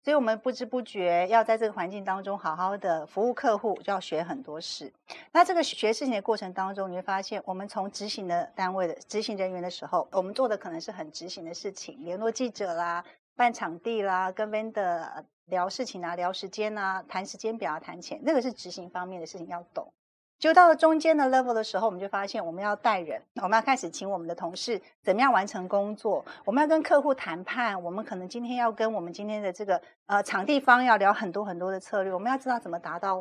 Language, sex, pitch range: Chinese, female, 180-245 Hz